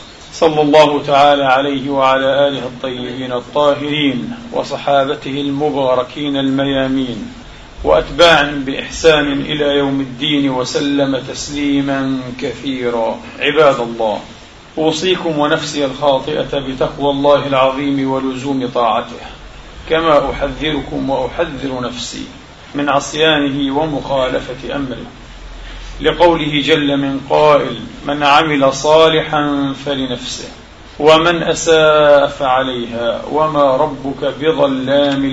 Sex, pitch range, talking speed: male, 130-150 Hz, 85 wpm